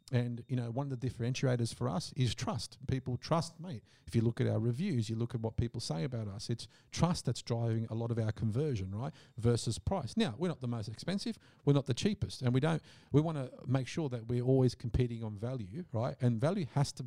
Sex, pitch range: male, 115-145 Hz